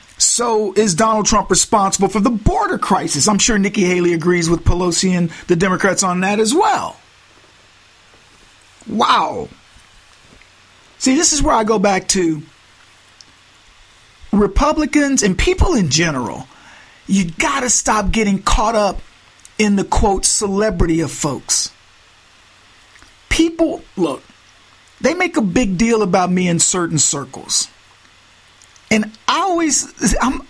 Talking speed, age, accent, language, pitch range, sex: 130 wpm, 50-69, American, English, 170-260 Hz, male